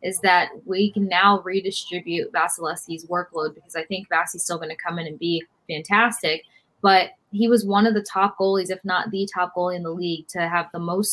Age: 20-39